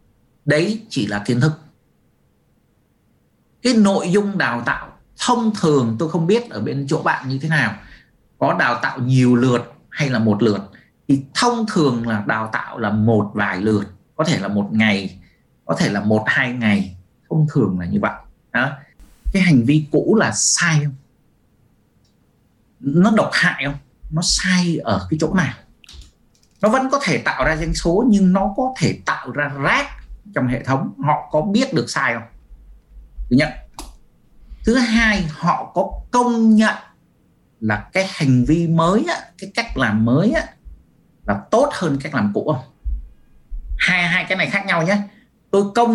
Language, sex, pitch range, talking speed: Vietnamese, male, 115-195 Hz, 170 wpm